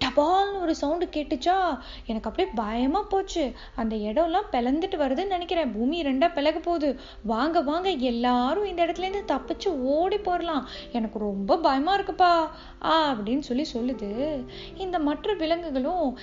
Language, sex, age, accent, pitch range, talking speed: Tamil, female, 20-39, native, 260-345 Hz, 135 wpm